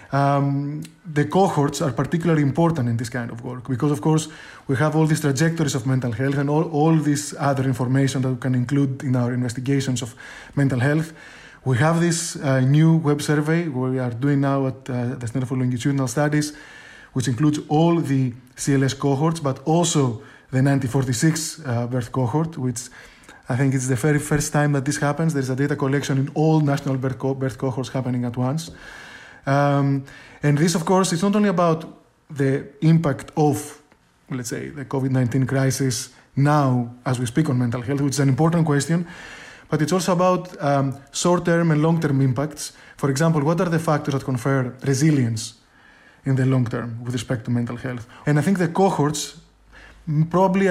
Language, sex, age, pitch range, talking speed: English, male, 20-39, 130-155 Hz, 185 wpm